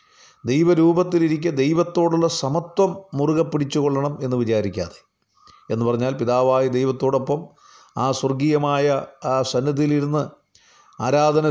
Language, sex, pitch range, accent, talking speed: Malayalam, male, 125-165 Hz, native, 85 wpm